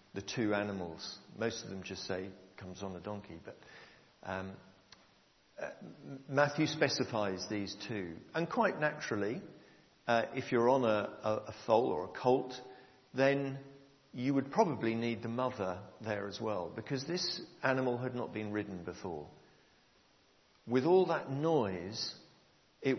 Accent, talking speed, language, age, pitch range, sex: British, 145 wpm, English, 50-69, 105-140 Hz, male